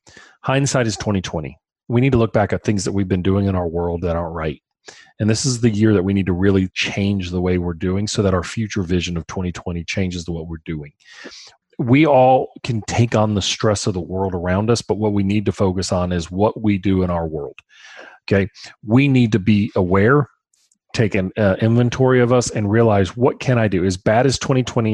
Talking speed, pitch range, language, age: 230 wpm, 95-125 Hz, English, 40-59